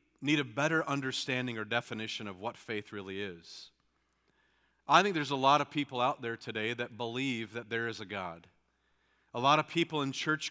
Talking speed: 195 wpm